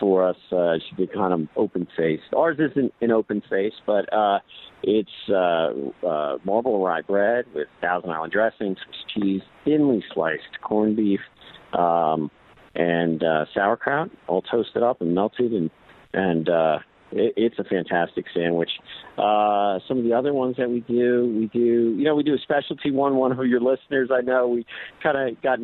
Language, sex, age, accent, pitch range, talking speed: English, male, 50-69, American, 95-130 Hz, 175 wpm